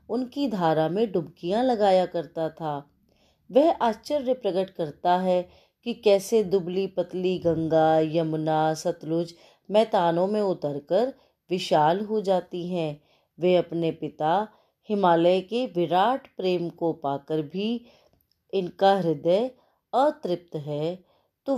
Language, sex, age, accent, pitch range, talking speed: Hindi, female, 30-49, native, 160-210 Hz, 115 wpm